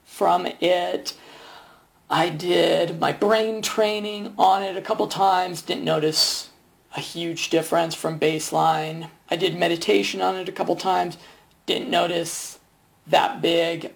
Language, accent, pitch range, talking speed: English, American, 155-195 Hz, 135 wpm